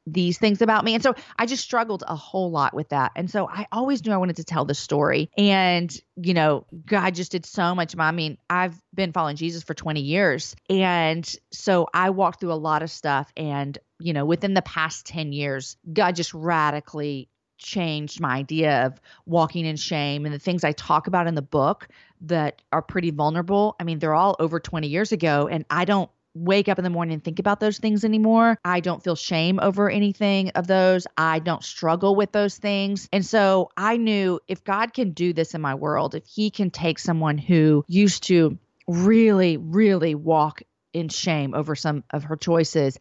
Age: 30-49